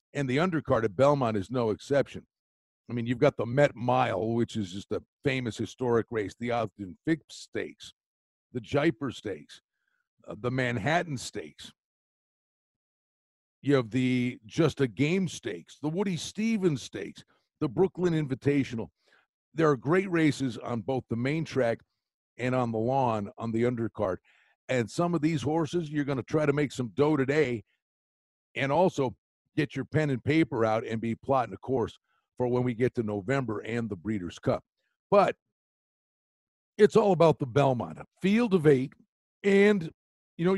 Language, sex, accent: English, male, American